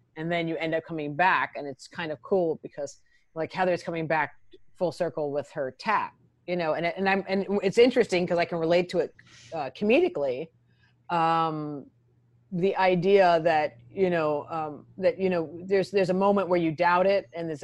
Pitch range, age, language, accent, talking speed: 160-205 Hz, 30-49, English, American, 195 wpm